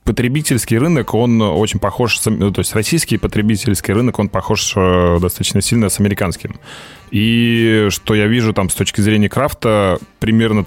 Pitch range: 95-110 Hz